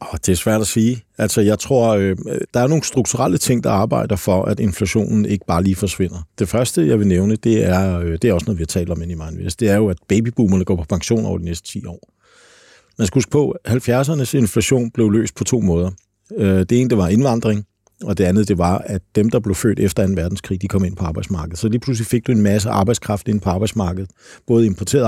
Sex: male